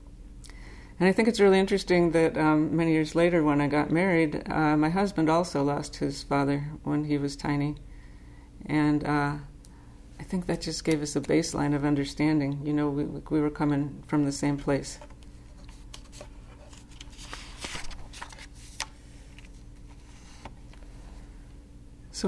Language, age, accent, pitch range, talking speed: English, 50-69, American, 145-170 Hz, 130 wpm